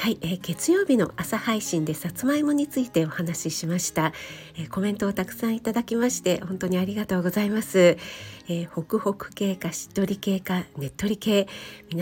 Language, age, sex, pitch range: Japanese, 50-69, female, 170-220 Hz